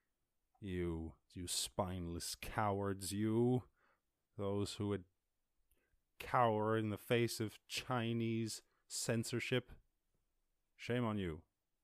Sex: male